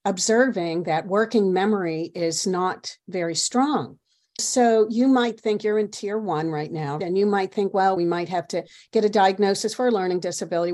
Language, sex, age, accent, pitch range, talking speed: English, female, 50-69, American, 175-230 Hz, 190 wpm